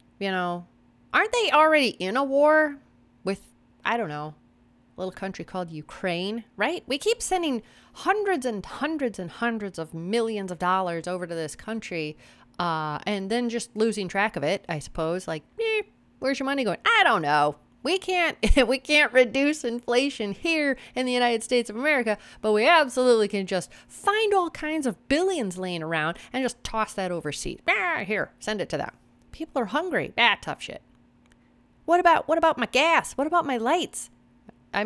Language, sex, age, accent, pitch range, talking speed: English, female, 30-49, American, 180-270 Hz, 180 wpm